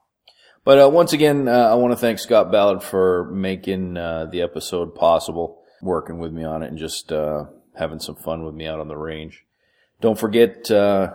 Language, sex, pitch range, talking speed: English, male, 80-100 Hz, 200 wpm